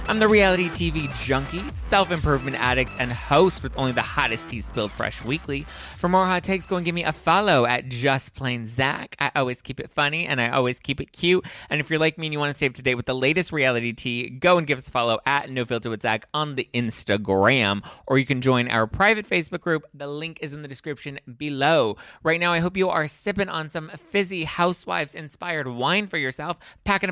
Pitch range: 120-170 Hz